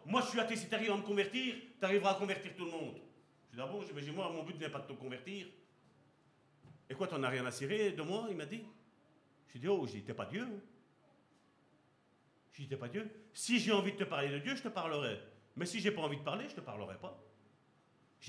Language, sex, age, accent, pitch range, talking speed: French, male, 50-69, French, 145-210 Hz, 255 wpm